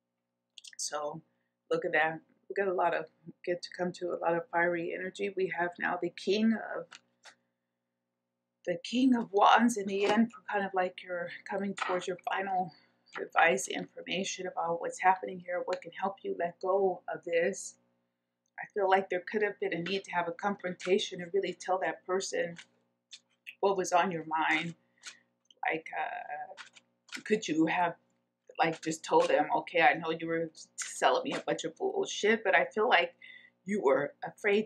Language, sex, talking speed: English, female, 180 wpm